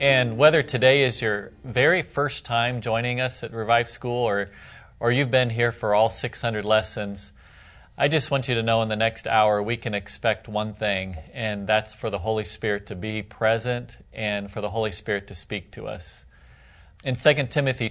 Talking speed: 195 wpm